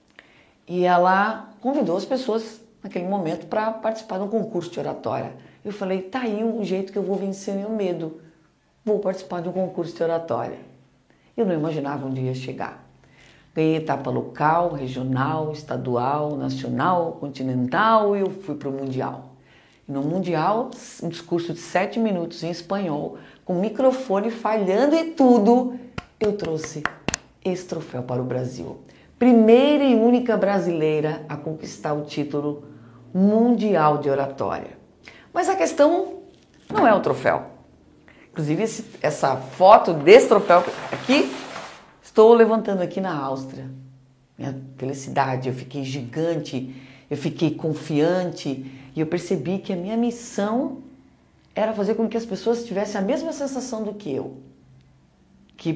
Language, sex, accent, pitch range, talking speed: Portuguese, female, Brazilian, 150-220 Hz, 145 wpm